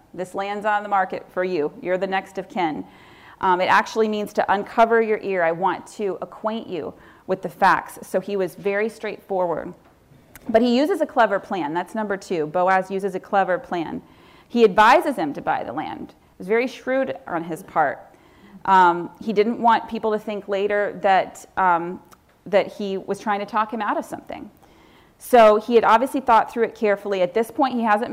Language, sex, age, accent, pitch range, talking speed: English, female, 40-59, American, 190-230 Hz, 200 wpm